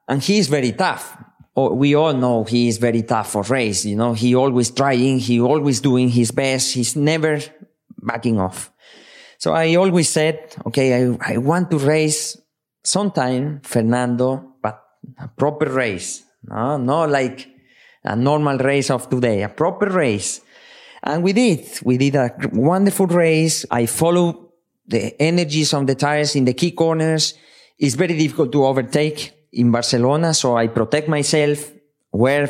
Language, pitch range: English, 120-160 Hz